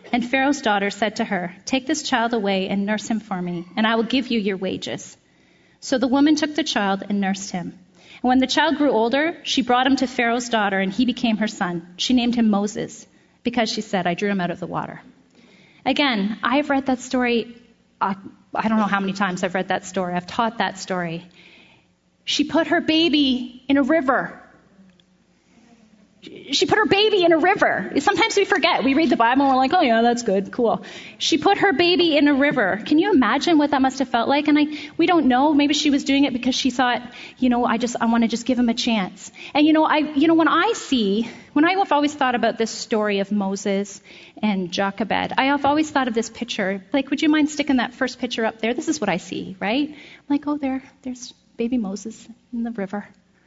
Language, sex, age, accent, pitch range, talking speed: English, female, 30-49, American, 205-285 Hz, 230 wpm